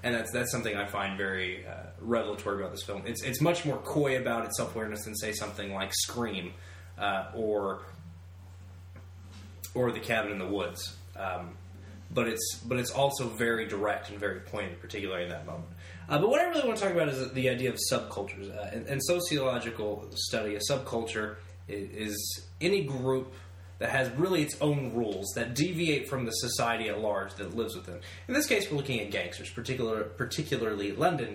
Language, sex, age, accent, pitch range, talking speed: English, male, 20-39, American, 90-130 Hz, 190 wpm